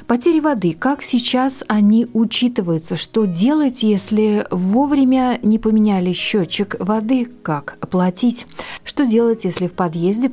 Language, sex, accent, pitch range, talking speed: Russian, female, native, 185-230 Hz, 120 wpm